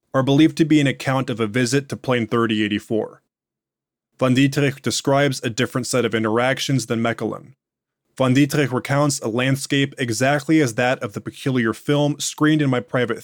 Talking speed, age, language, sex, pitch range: 170 wpm, 20-39, English, male, 115-140 Hz